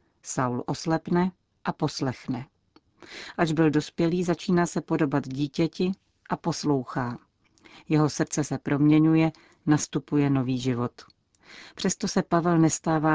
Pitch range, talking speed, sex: 135-155 Hz, 110 wpm, female